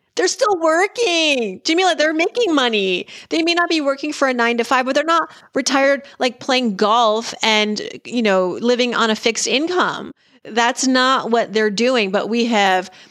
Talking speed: 185 wpm